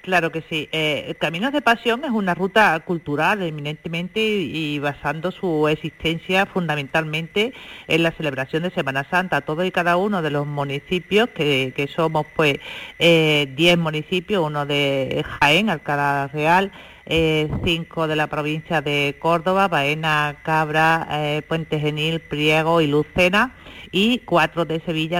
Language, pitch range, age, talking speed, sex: Spanish, 155-185 Hz, 50-69, 150 wpm, female